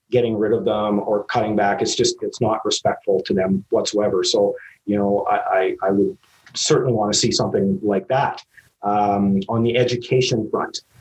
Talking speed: 185 wpm